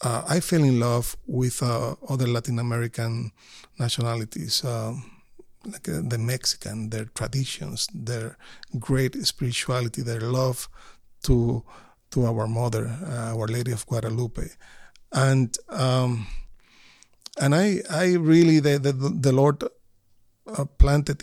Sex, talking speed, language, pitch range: male, 125 wpm, English, 115-140 Hz